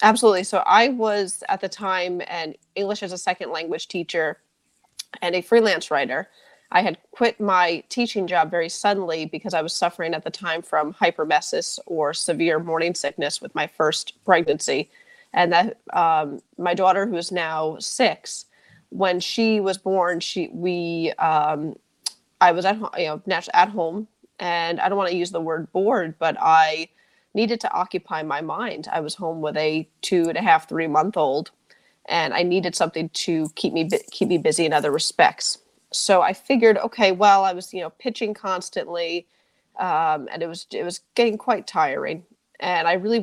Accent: American